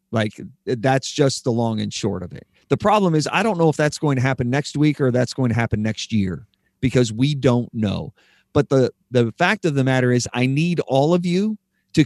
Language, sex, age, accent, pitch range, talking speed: English, male, 40-59, American, 115-150 Hz, 235 wpm